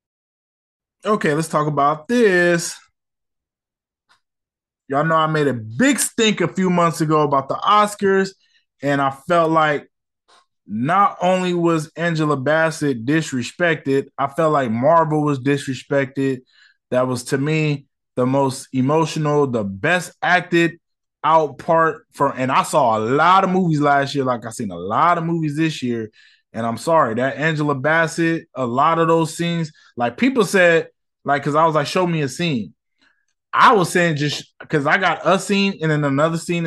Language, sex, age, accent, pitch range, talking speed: English, male, 20-39, American, 125-160 Hz, 165 wpm